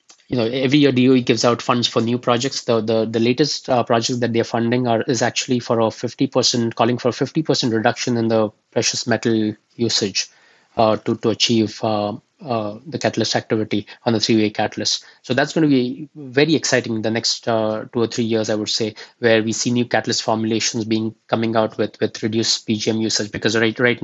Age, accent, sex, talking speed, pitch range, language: 20-39, Indian, male, 215 wpm, 110-120 Hz, English